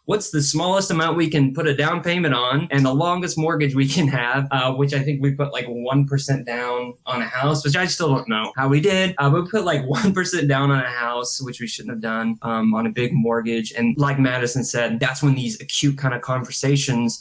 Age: 20-39